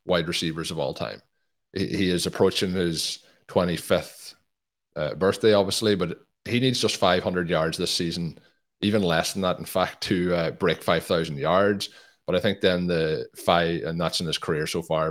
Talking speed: 180 wpm